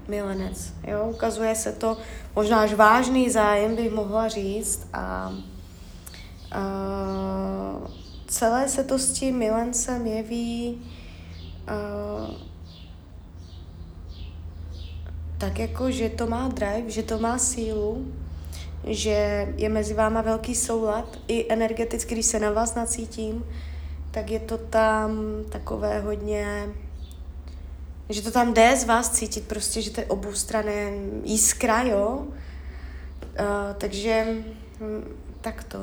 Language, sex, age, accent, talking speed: Czech, female, 20-39, native, 115 wpm